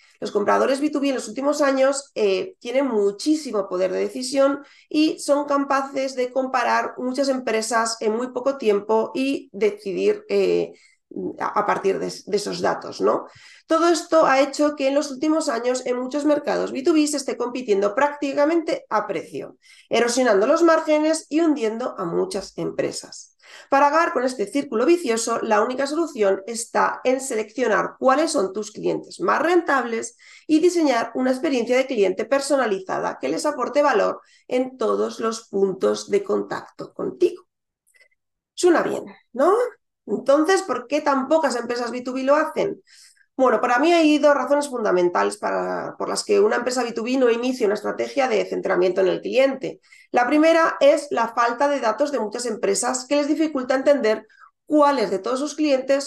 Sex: female